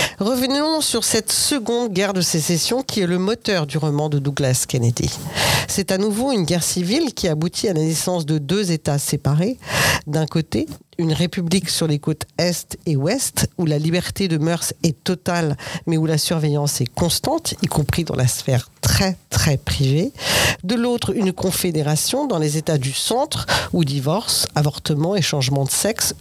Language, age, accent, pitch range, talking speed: French, 50-69, French, 150-200 Hz, 180 wpm